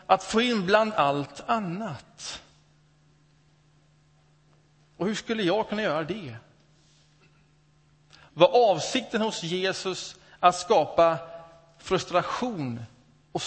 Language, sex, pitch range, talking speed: Swedish, male, 150-190 Hz, 95 wpm